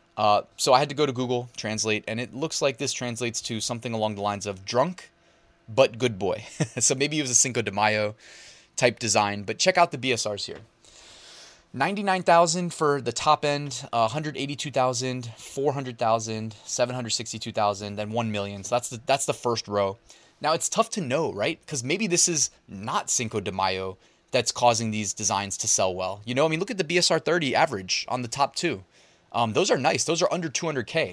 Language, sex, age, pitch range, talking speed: English, male, 20-39, 110-145 Hz, 200 wpm